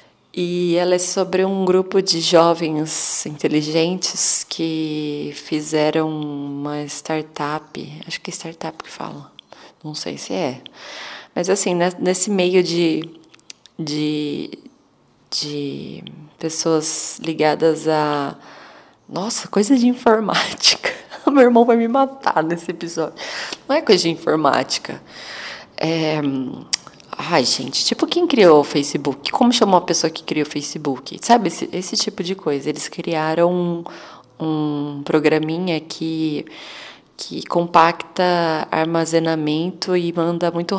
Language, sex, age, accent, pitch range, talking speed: Portuguese, female, 20-39, Brazilian, 155-185 Hz, 120 wpm